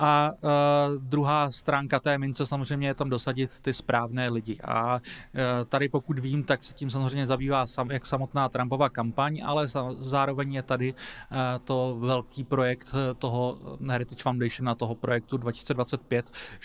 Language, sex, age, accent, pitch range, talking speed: Czech, male, 30-49, native, 120-135 Hz, 155 wpm